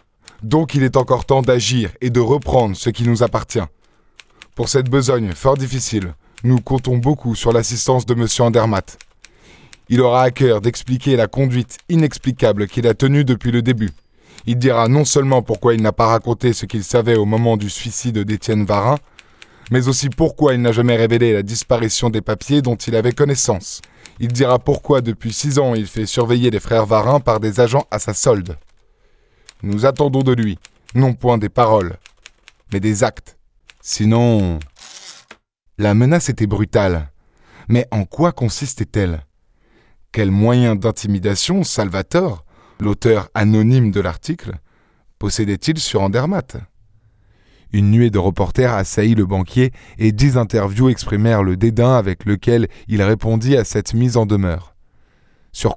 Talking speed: 160 wpm